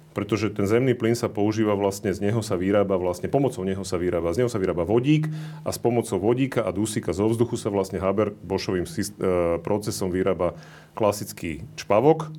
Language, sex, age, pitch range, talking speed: Slovak, male, 40-59, 95-115 Hz, 180 wpm